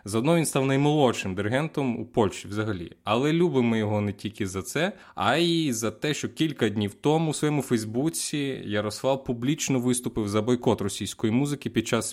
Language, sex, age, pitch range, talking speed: Ukrainian, male, 20-39, 105-135 Hz, 175 wpm